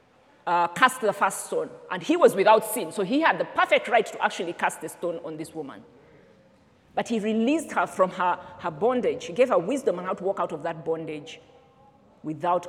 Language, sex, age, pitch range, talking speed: English, female, 40-59, 180-285 Hz, 215 wpm